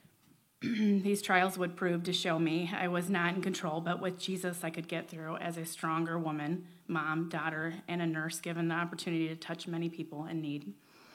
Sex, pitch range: female, 165-185 Hz